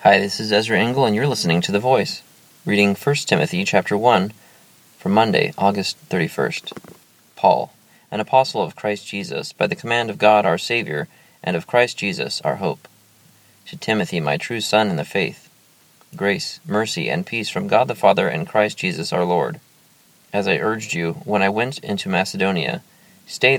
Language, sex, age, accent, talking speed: English, male, 30-49, American, 180 wpm